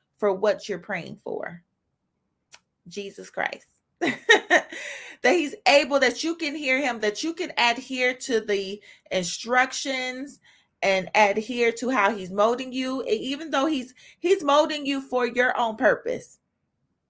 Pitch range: 205-275 Hz